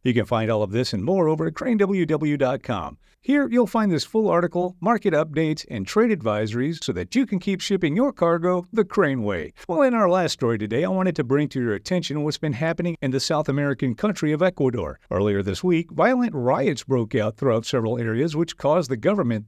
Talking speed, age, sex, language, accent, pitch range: 215 wpm, 40-59, male, English, American, 130-200 Hz